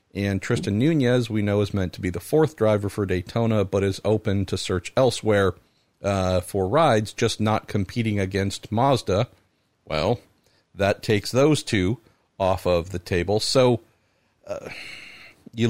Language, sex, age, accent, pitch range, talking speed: English, male, 50-69, American, 95-115 Hz, 155 wpm